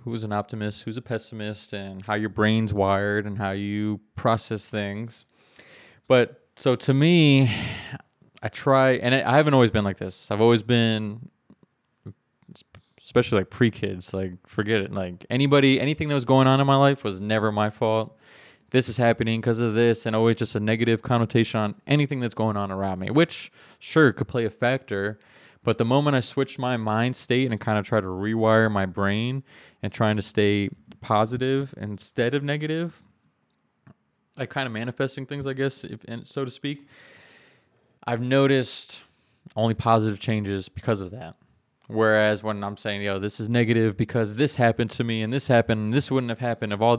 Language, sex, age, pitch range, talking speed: English, male, 20-39, 105-130 Hz, 180 wpm